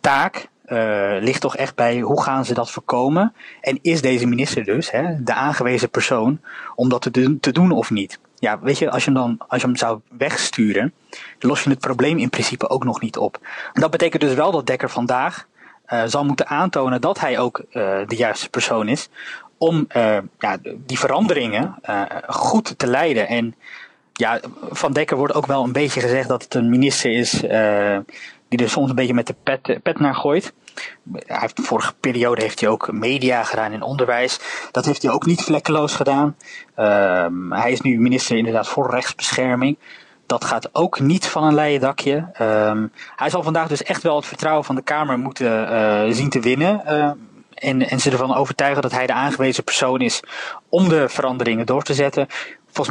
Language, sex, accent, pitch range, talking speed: Dutch, male, Dutch, 120-145 Hz, 200 wpm